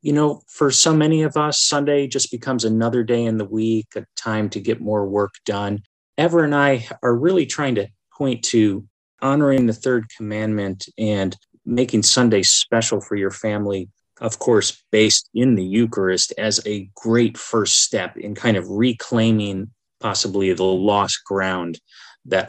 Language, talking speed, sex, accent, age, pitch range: English, 165 wpm, male, American, 30-49, 105-125 Hz